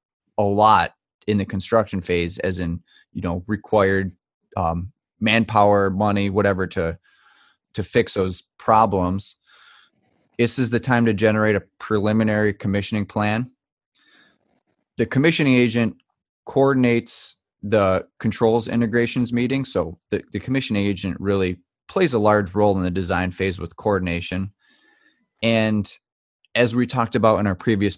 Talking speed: 135 wpm